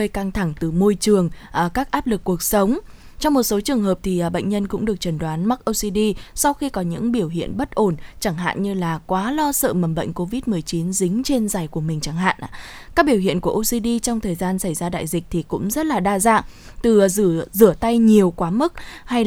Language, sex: Vietnamese, female